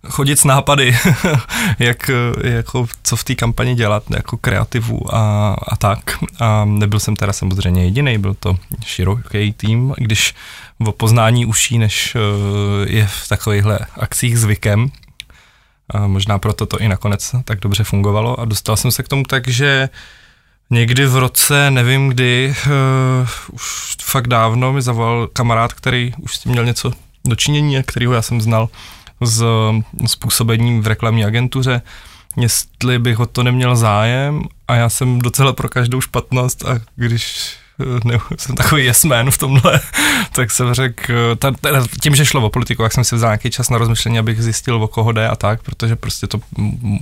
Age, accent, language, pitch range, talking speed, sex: 20-39, native, Czech, 110-125 Hz, 165 wpm, male